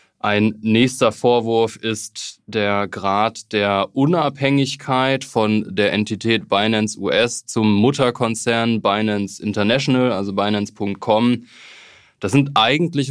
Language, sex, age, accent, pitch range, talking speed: German, male, 20-39, German, 105-125 Hz, 100 wpm